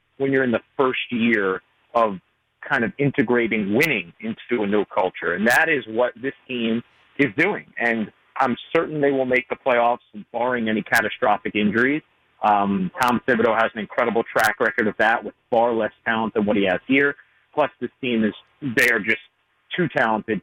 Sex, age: male, 40-59